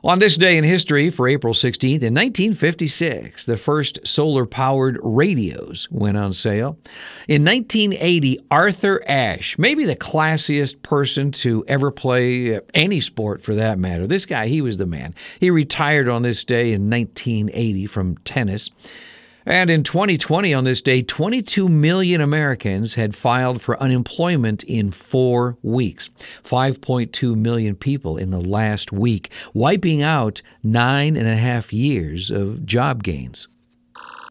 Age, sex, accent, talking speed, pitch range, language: 50-69, male, American, 140 wpm, 110-145 Hz, English